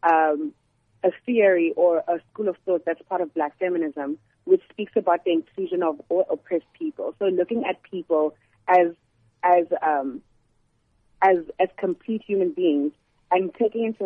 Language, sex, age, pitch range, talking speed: English, female, 30-49, 155-195 Hz, 160 wpm